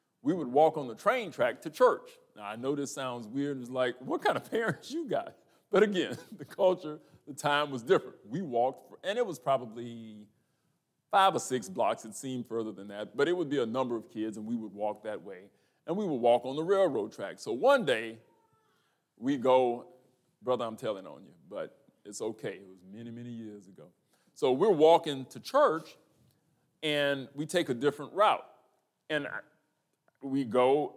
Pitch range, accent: 120-180 Hz, American